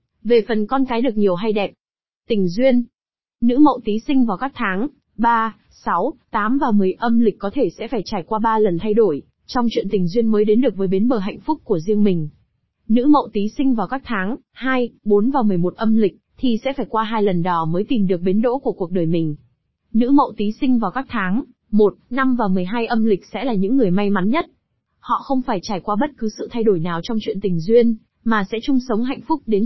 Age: 20-39